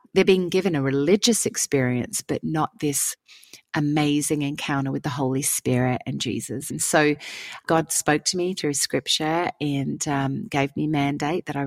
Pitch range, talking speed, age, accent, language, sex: 140-170 Hz, 165 wpm, 30-49, Australian, English, female